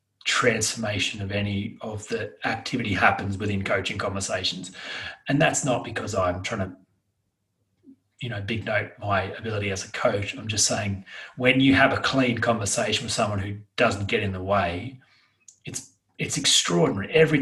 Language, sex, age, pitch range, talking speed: English, male, 30-49, 100-125 Hz, 160 wpm